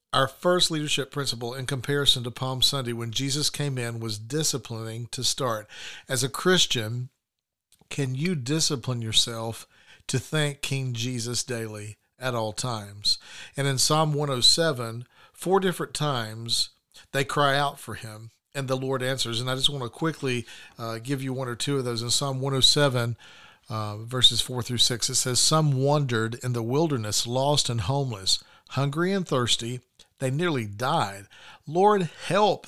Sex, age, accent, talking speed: male, 50-69, American, 160 wpm